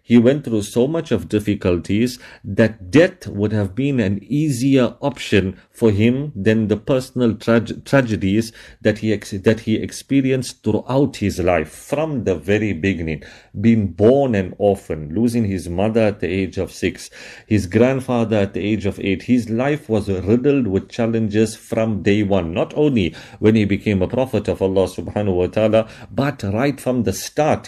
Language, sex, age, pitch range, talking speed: English, male, 50-69, 95-120 Hz, 165 wpm